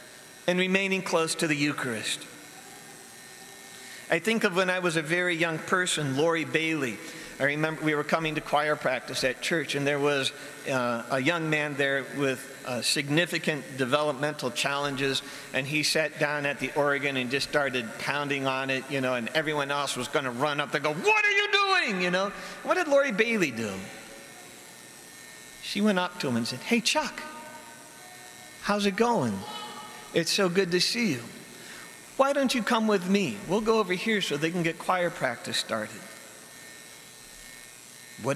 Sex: male